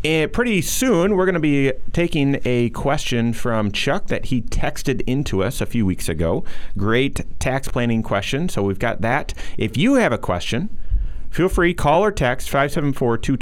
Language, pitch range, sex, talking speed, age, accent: English, 95-140 Hz, male, 175 wpm, 30-49, American